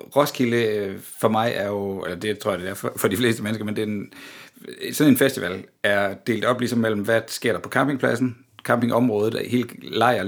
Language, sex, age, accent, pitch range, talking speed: Danish, male, 60-79, native, 100-125 Hz, 210 wpm